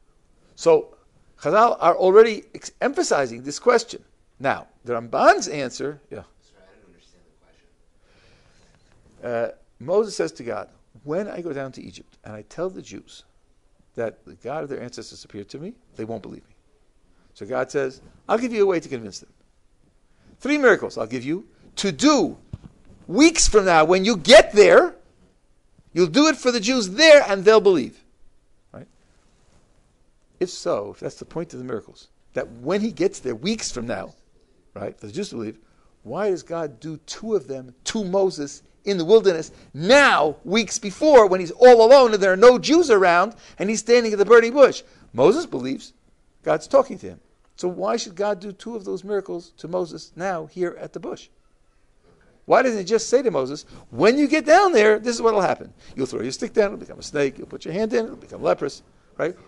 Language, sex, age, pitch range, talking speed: English, male, 50-69, 165-245 Hz, 190 wpm